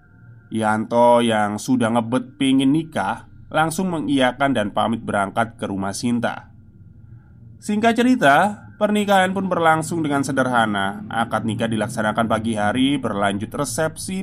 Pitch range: 110-145 Hz